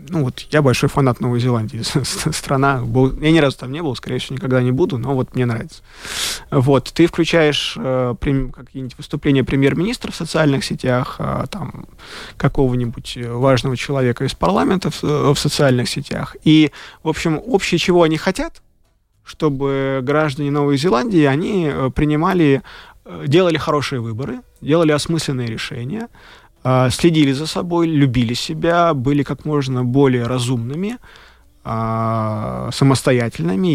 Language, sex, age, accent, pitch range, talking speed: Russian, male, 20-39, native, 125-155 Hz, 140 wpm